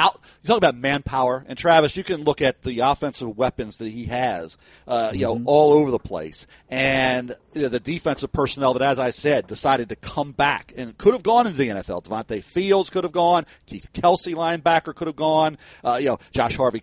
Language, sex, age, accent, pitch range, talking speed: English, male, 40-59, American, 130-165 Hz, 215 wpm